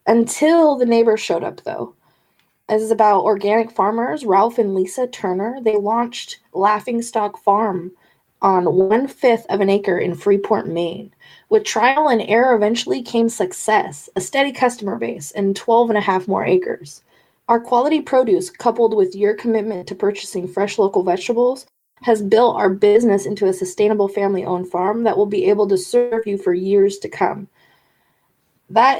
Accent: American